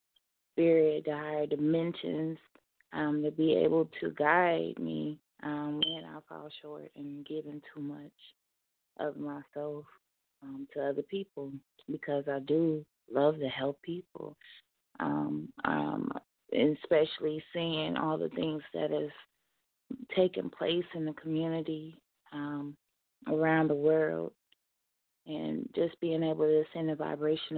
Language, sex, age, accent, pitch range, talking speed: English, female, 20-39, American, 140-160 Hz, 130 wpm